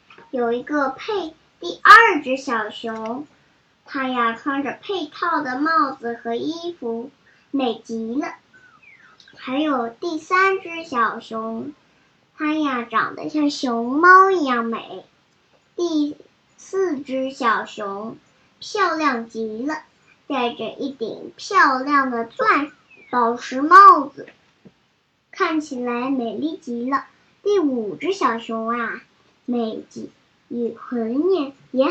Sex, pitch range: male, 235-330 Hz